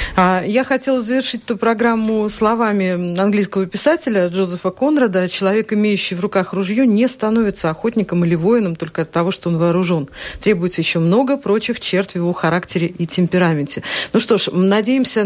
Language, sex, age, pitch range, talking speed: Russian, female, 40-59, 185-230 Hz, 155 wpm